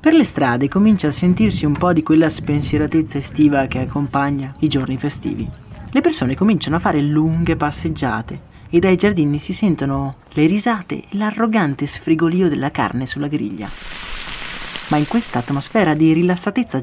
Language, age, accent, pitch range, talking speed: Italian, 30-49, native, 145-200 Hz, 155 wpm